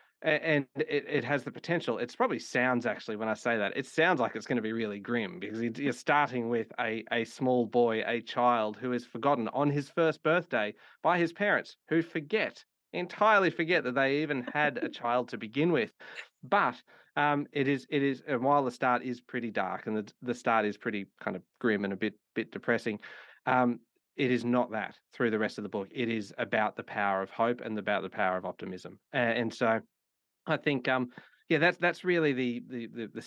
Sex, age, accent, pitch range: male, 30-49, Australian, 110-145 Hz